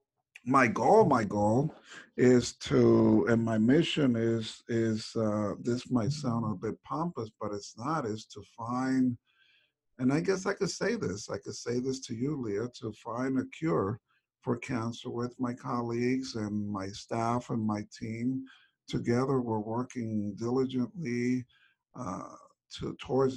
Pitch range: 110-130 Hz